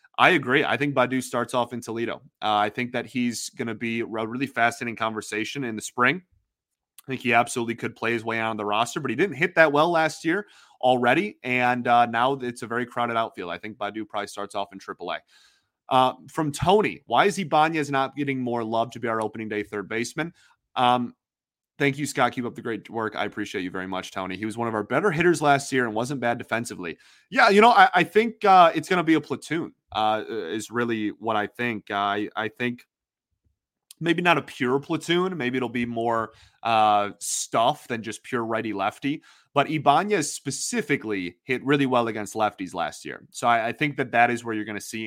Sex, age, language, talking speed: male, 30-49, English, 220 wpm